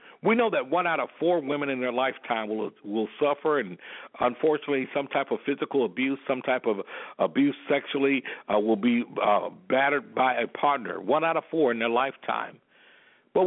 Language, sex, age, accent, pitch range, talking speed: English, male, 60-79, American, 125-165 Hz, 185 wpm